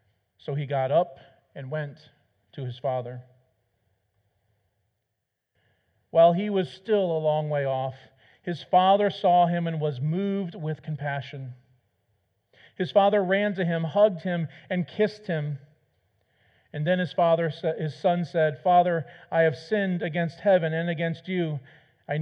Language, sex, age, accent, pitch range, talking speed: English, male, 40-59, American, 120-175 Hz, 145 wpm